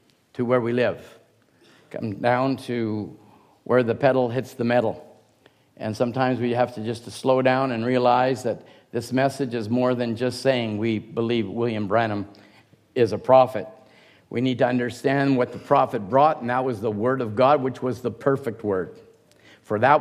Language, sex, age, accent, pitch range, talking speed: English, male, 50-69, American, 115-135 Hz, 180 wpm